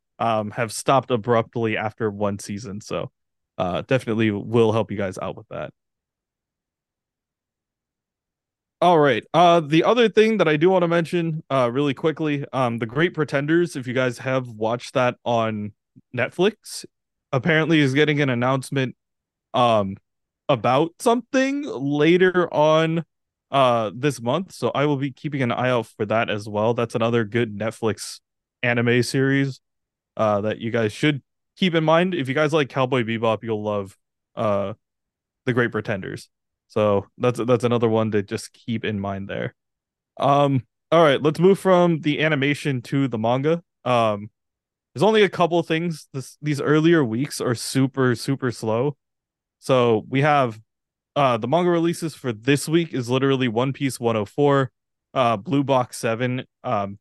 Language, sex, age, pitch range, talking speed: English, male, 20-39, 115-150 Hz, 160 wpm